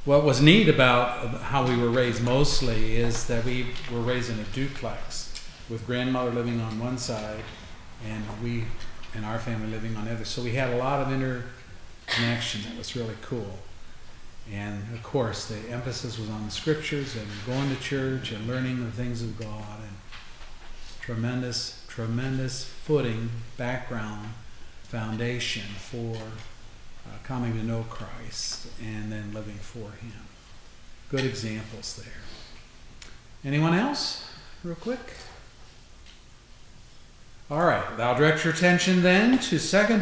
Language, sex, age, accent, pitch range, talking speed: English, male, 40-59, American, 110-135 Hz, 140 wpm